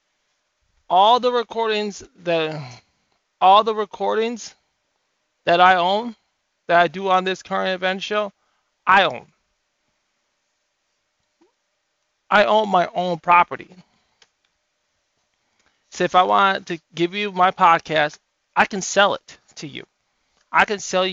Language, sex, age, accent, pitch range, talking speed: English, male, 20-39, American, 170-200 Hz, 120 wpm